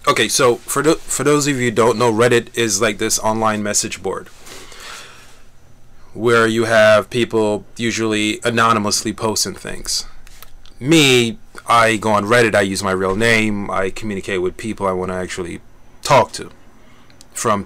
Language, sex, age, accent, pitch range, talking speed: English, male, 30-49, American, 105-130 Hz, 160 wpm